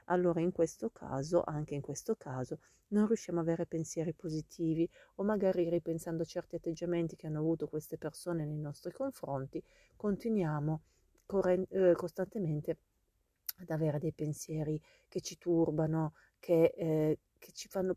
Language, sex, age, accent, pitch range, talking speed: Italian, female, 30-49, native, 150-175 Hz, 145 wpm